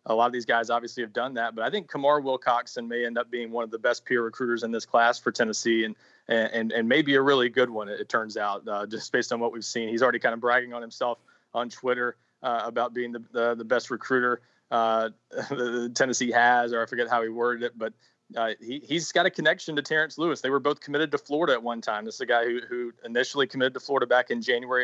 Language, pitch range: English, 115-130 Hz